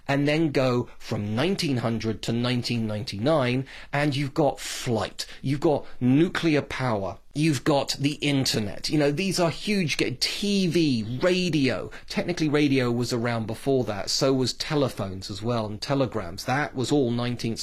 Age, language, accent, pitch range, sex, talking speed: 30-49, English, British, 115-155 Hz, male, 150 wpm